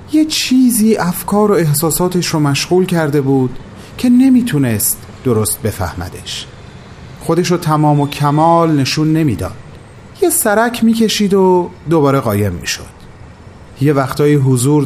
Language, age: Persian, 30-49